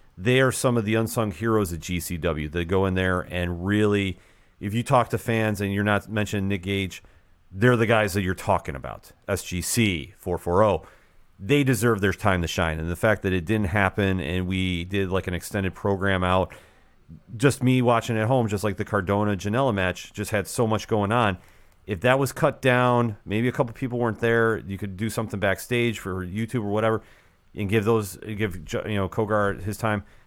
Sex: male